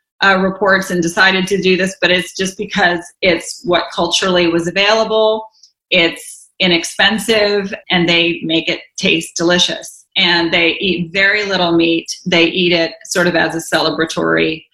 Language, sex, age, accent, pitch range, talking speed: English, female, 30-49, American, 170-205 Hz, 155 wpm